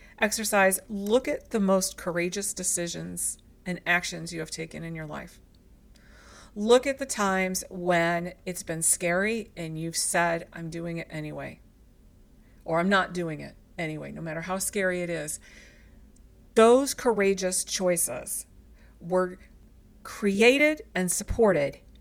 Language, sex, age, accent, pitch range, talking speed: English, female, 40-59, American, 170-210 Hz, 135 wpm